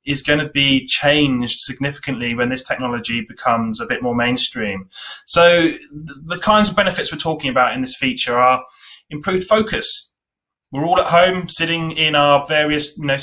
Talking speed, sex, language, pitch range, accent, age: 175 wpm, male, English, 135-170 Hz, British, 20-39